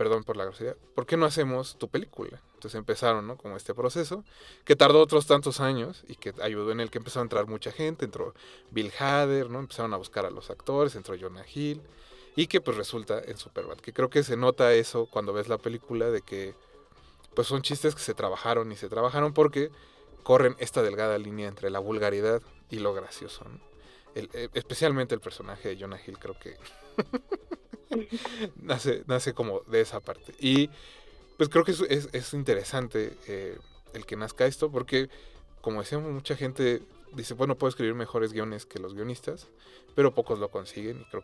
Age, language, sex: 30-49, Spanish, male